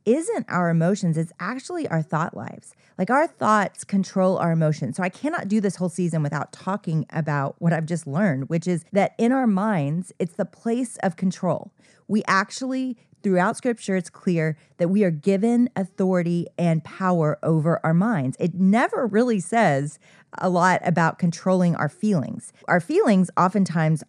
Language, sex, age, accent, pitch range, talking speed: English, female, 30-49, American, 155-195 Hz, 170 wpm